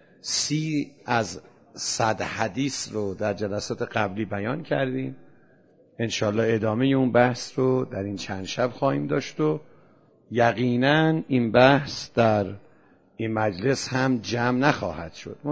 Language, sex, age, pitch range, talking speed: Persian, male, 50-69, 110-135 Hz, 125 wpm